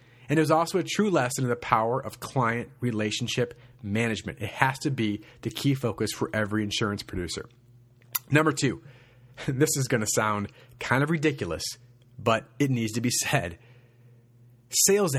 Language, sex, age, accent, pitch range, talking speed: English, male, 30-49, American, 120-155 Hz, 165 wpm